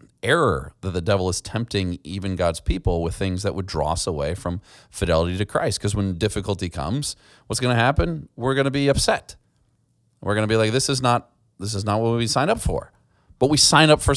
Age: 30-49